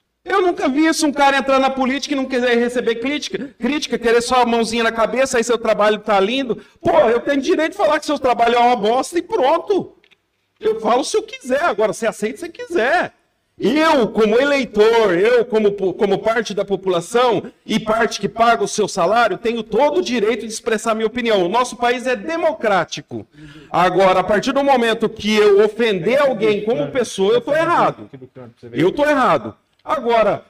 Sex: male